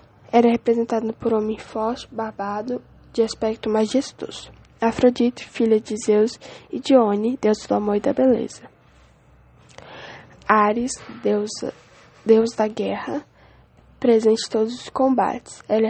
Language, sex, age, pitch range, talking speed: English, female, 10-29, 215-245 Hz, 125 wpm